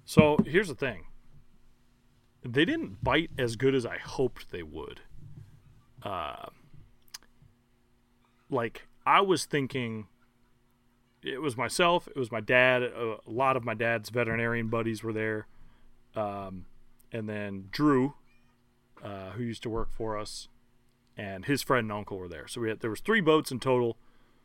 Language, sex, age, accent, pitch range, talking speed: English, male, 30-49, American, 110-135 Hz, 150 wpm